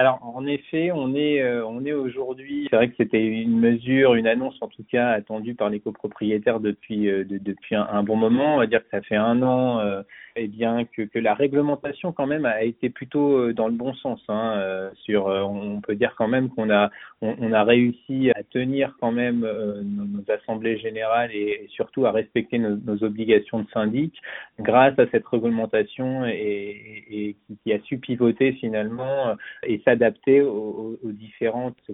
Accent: French